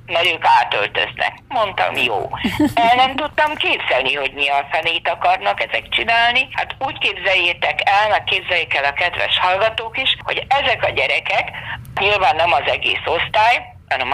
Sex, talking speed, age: female, 155 wpm, 50-69